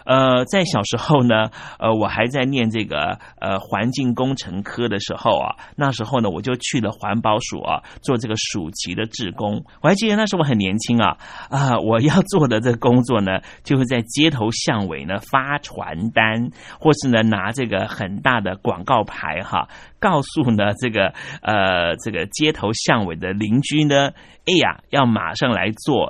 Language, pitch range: Chinese, 110-145 Hz